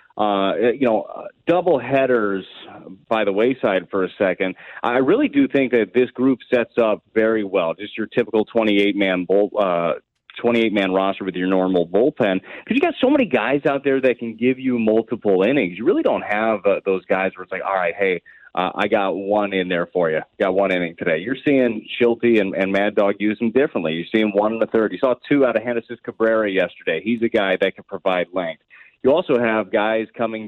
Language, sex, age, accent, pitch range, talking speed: English, male, 30-49, American, 95-115 Hz, 215 wpm